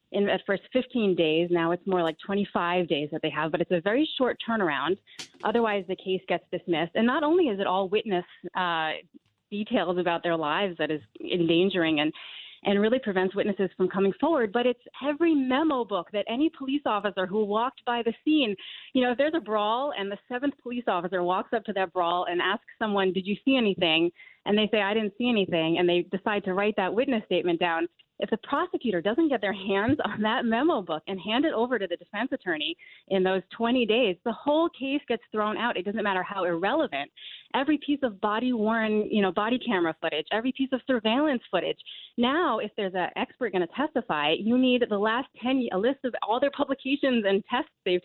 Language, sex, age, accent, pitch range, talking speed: English, female, 30-49, American, 185-250 Hz, 215 wpm